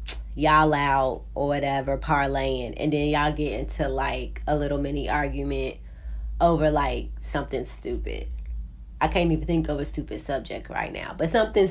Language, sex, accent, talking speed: English, female, American, 160 wpm